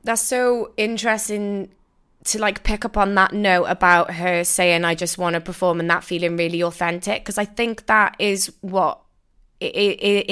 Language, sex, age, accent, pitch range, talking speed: English, female, 20-39, British, 175-210 Hz, 180 wpm